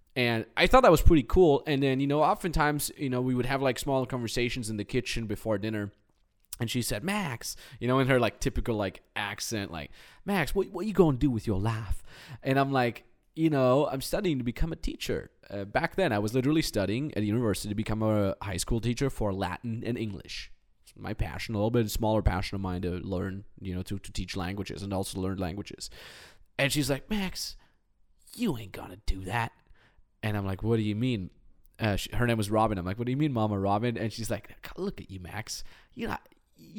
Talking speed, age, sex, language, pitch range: 230 wpm, 20-39, male, English, 100-145 Hz